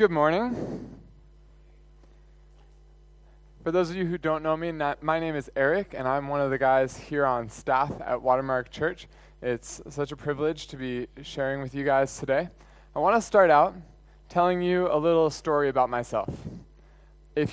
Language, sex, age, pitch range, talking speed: English, male, 20-39, 125-160 Hz, 170 wpm